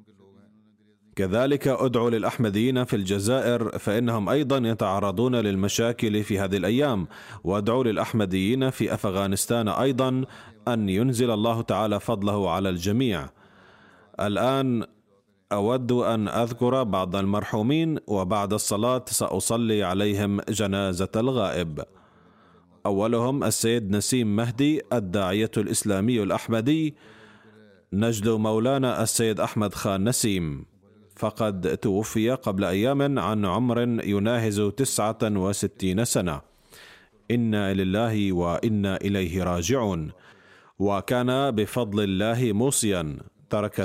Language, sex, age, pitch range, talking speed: Arabic, male, 30-49, 100-120 Hz, 95 wpm